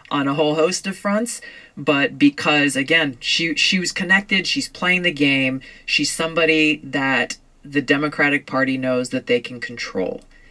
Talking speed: 160 wpm